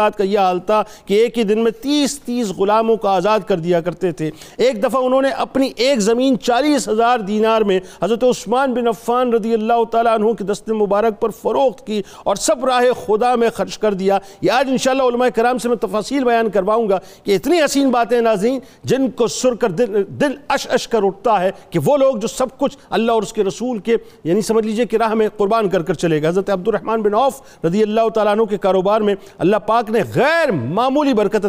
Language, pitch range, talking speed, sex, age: Urdu, 195-245 Hz, 215 wpm, male, 50-69